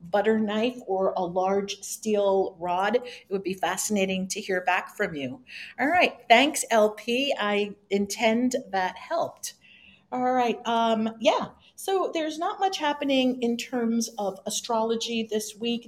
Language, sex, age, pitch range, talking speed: English, female, 50-69, 175-225 Hz, 145 wpm